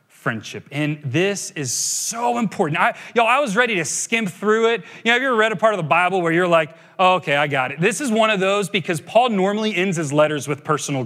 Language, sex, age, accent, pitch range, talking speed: English, male, 30-49, American, 150-215 Hz, 255 wpm